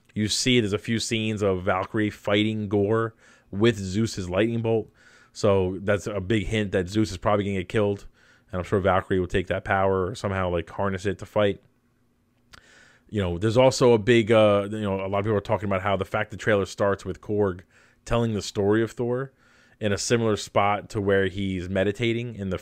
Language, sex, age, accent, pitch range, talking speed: English, male, 20-39, American, 100-115 Hz, 215 wpm